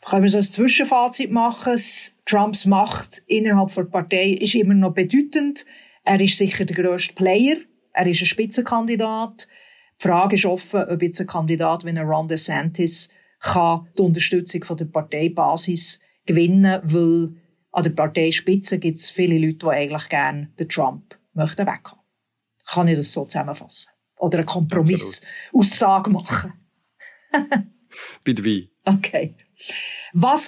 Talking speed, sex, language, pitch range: 140 wpm, female, German, 170-210 Hz